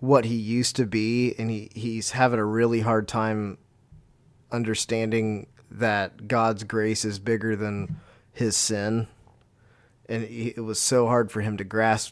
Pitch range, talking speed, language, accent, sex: 105-120 Hz, 155 wpm, English, American, male